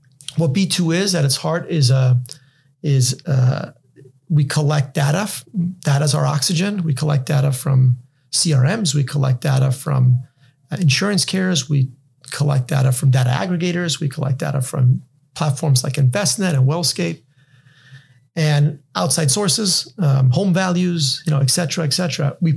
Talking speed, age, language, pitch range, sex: 150 wpm, 40-59, English, 135-160 Hz, male